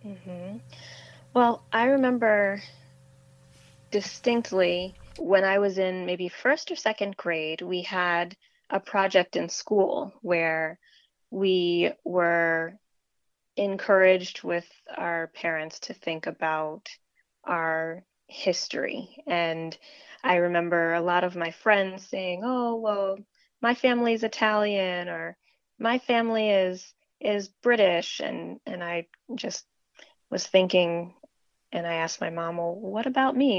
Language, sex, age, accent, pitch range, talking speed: English, female, 20-39, American, 170-215 Hz, 120 wpm